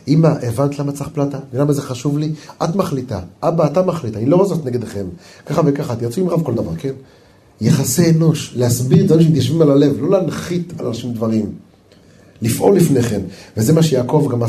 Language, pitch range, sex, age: Hebrew, 110-150 Hz, male, 30-49